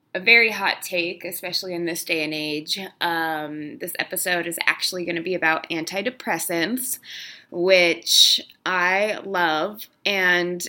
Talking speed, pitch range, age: 135 wpm, 165-215 Hz, 20-39